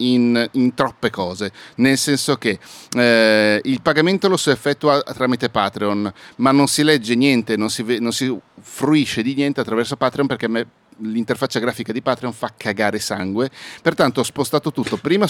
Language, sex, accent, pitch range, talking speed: Italian, male, native, 110-145 Hz, 170 wpm